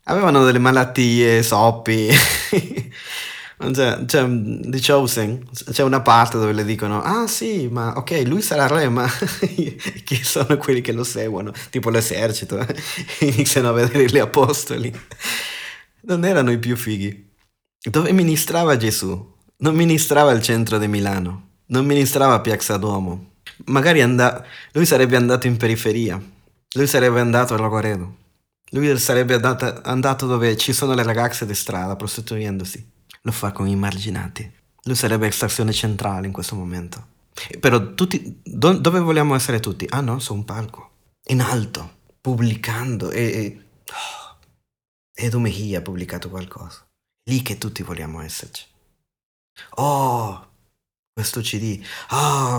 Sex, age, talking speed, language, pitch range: male, 20-39, 135 wpm, Italian, 105-135 Hz